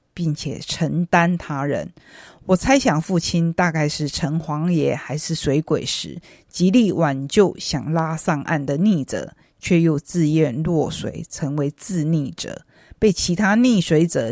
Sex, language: female, Chinese